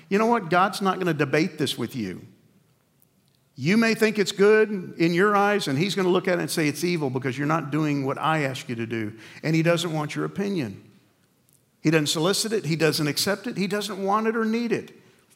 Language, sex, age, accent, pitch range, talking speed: English, male, 50-69, American, 130-175 Hz, 240 wpm